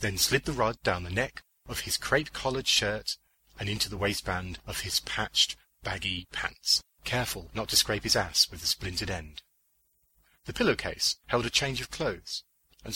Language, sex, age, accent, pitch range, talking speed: English, male, 30-49, British, 95-130 Hz, 180 wpm